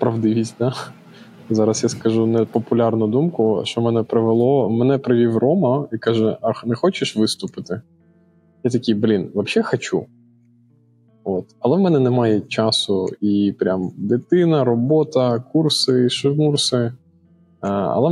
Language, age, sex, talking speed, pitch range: Ukrainian, 20-39, male, 125 wpm, 105-125 Hz